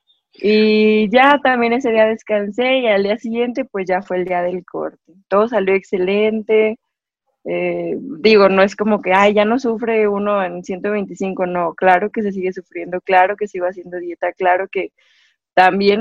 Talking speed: 175 wpm